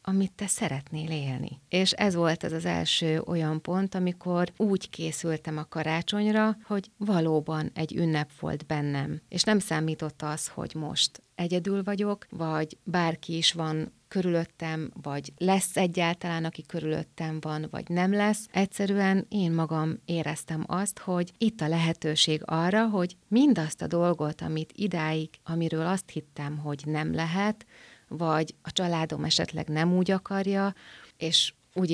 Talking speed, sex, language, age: 145 wpm, female, Hungarian, 30-49